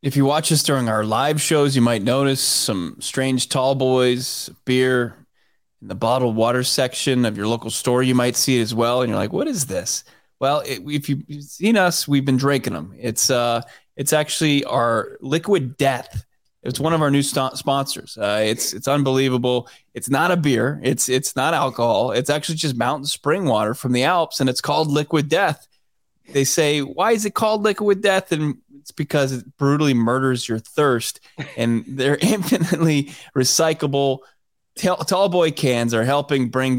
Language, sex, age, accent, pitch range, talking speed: English, male, 20-39, American, 120-145 Hz, 185 wpm